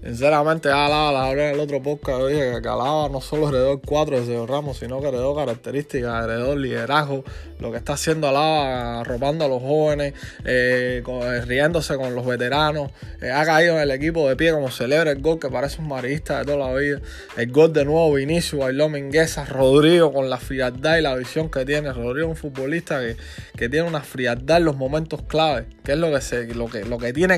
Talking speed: 225 wpm